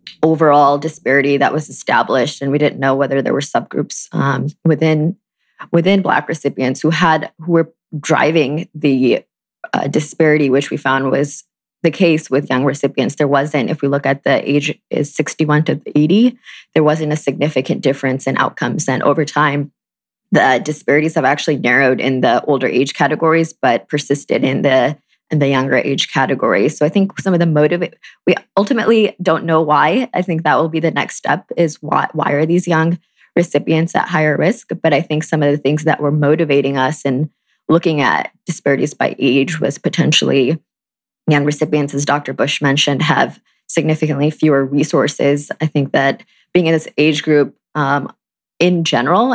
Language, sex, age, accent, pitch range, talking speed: English, female, 20-39, American, 140-160 Hz, 180 wpm